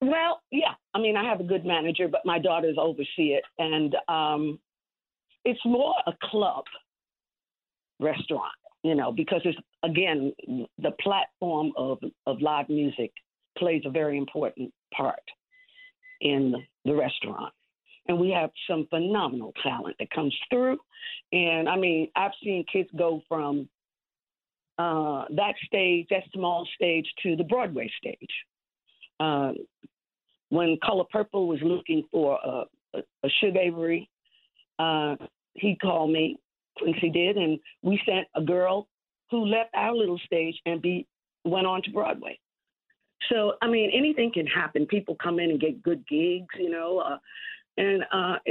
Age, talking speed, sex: 50-69, 150 wpm, female